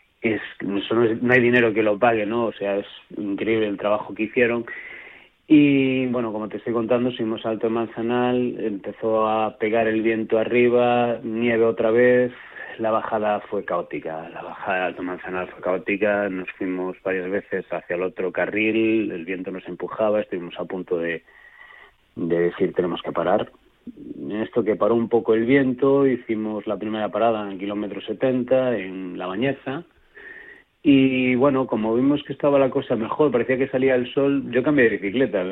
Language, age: Spanish, 30-49